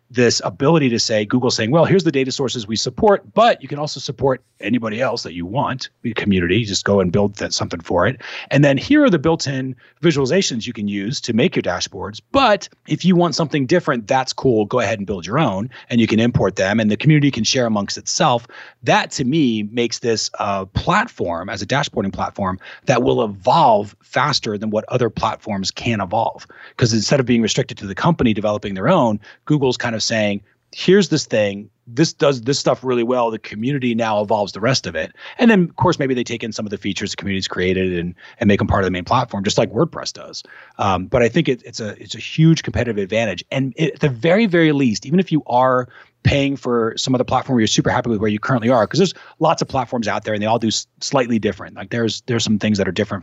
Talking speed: 240 wpm